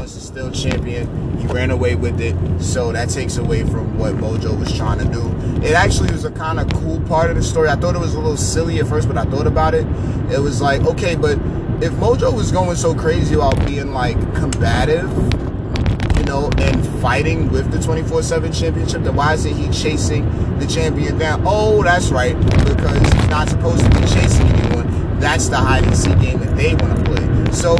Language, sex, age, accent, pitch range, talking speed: English, male, 30-49, American, 90-120 Hz, 210 wpm